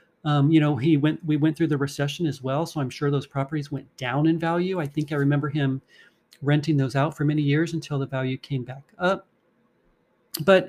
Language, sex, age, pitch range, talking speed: English, male, 40-59, 140-170 Hz, 220 wpm